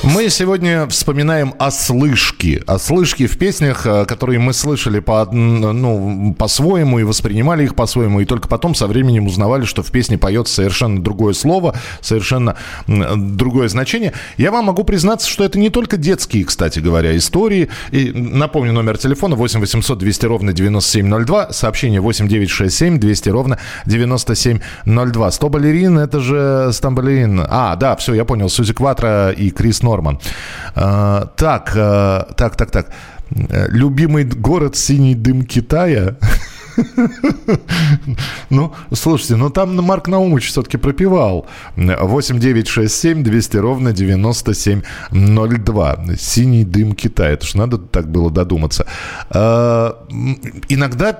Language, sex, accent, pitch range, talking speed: Russian, male, native, 100-140 Hz, 140 wpm